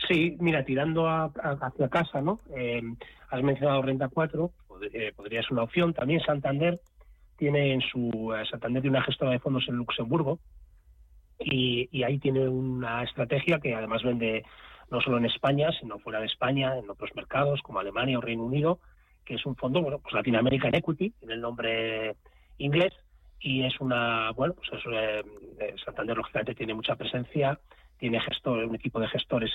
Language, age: Spanish, 30-49